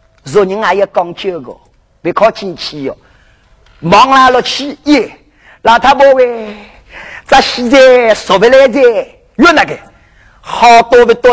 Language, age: Chinese, 30-49